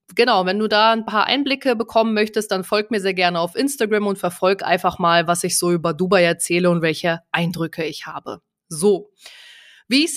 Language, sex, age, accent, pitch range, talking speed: German, female, 20-39, German, 185-220 Hz, 205 wpm